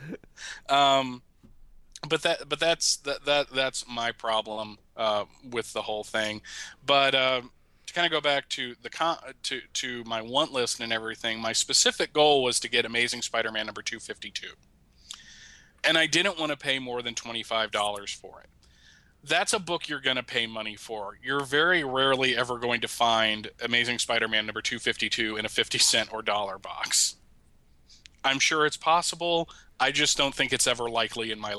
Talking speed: 190 wpm